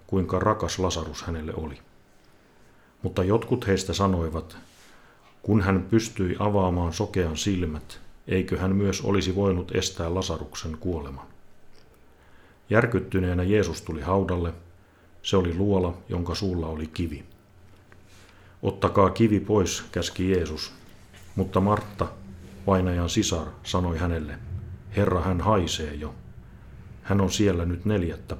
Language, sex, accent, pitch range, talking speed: Finnish, male, native, 85-100 Hz, 115 wpm